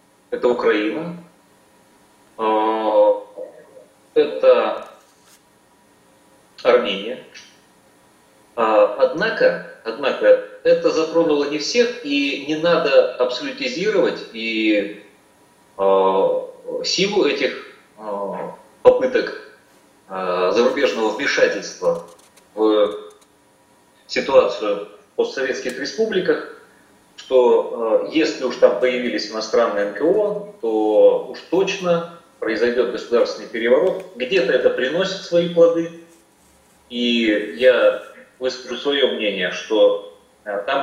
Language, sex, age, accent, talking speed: Russian, male, 30-49, native, 75 wpm